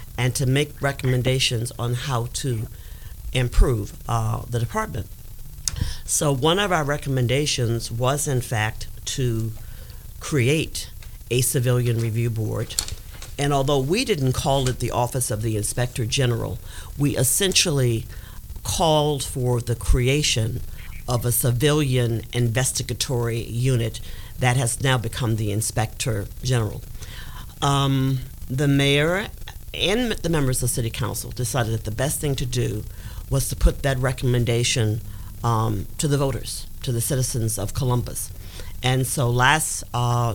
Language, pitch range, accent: English, 110-135 Hz, American